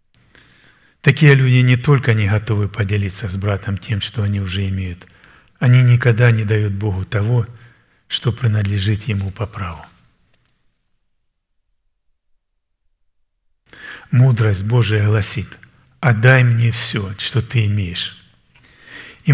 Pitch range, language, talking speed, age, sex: 105-125 Hz, Russian, 110 wpm, 40-59, male